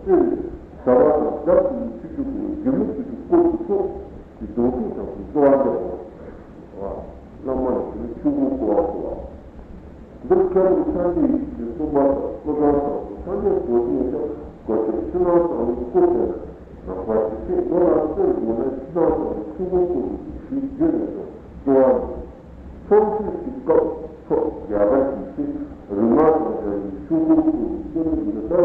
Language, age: Italian, 50-69